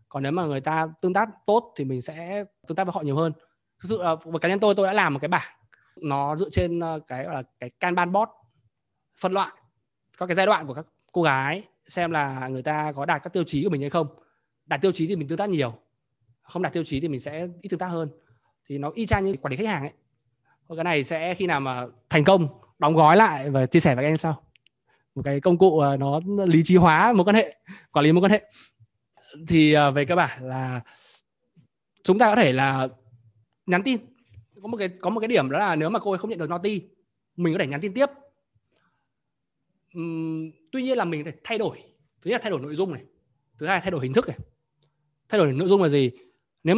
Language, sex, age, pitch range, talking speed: Vietnamese, male, 20-39, 140-190 Hz, 240 wpm